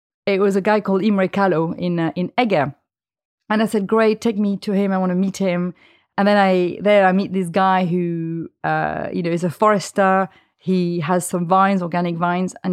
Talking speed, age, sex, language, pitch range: 215 wpm, 30-49, female, English, 175-205 Hz